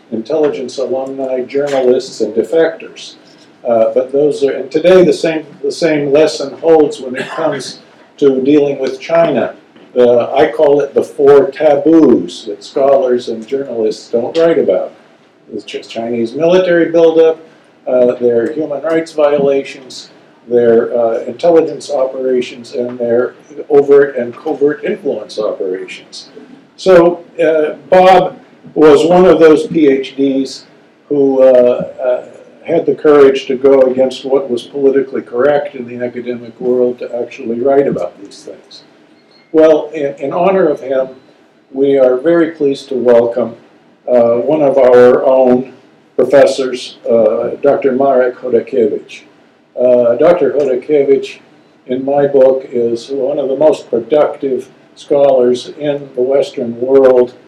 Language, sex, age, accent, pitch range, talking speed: English, male, 50-69, American, 125-160 Hz, 135 wpm